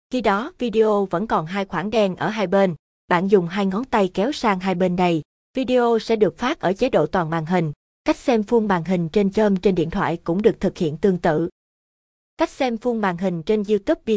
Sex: female